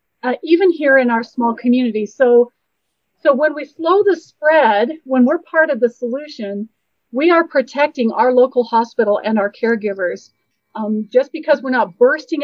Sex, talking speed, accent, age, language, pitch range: female, 170 wpm, American, 40-59, English, 225-270 Hz